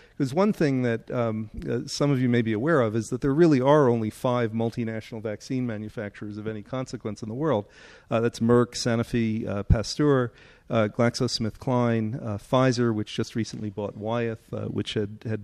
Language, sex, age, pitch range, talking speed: English, male, 40-59, 110-135 Hz, 185 wpm